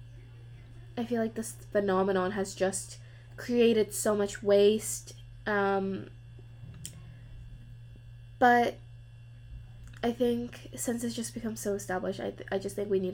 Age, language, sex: 10-29, English, female